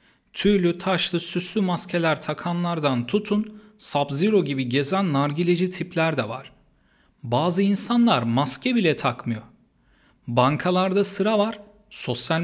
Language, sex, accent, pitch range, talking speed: Turkish, male, native, 130-190 Hz, 105 wpm